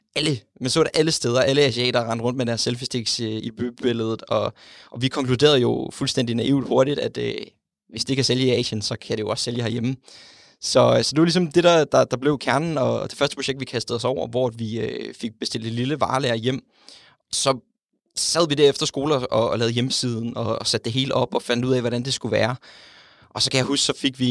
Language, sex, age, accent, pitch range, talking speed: English, male, 20-39, Danish, 115-135 Hz, 245 wpm